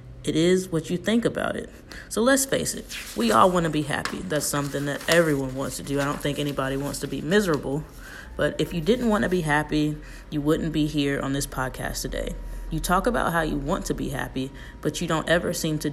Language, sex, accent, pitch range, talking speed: English, female, American, 135-160 Hz, 235 wpm